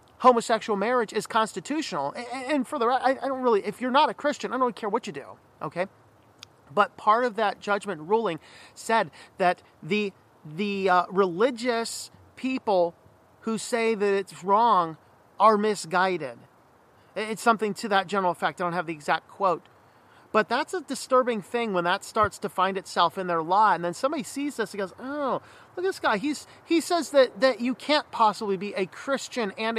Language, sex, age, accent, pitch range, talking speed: English, male, 40-59, American, 195-270 Hz, 190 wpm